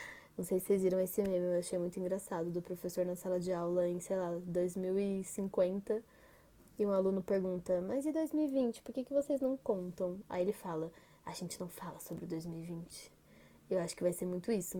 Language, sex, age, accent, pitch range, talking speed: Portuguese, female, 10-29, Brazilian, 180-220 Hz, 205 wpm